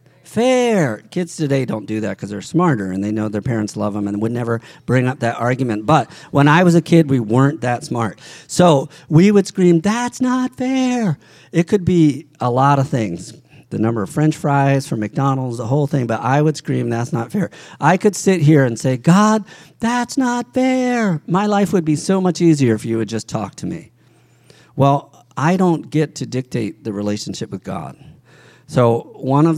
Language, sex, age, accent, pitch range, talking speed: English, male, 50-69, American, 120-165 Hz, 205 wpm